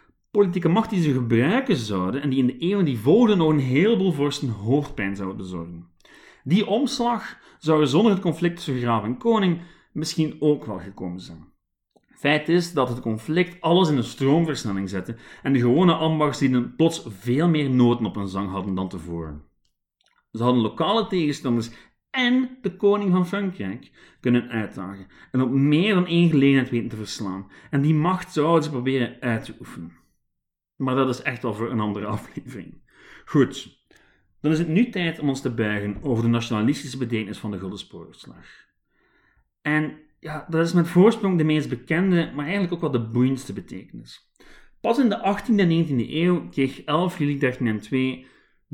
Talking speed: 175 wpm